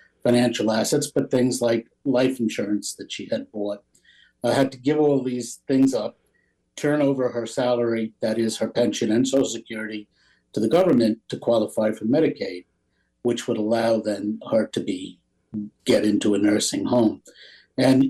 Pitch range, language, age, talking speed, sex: 115-135 Hz, English, 60-79, 170 wpm, male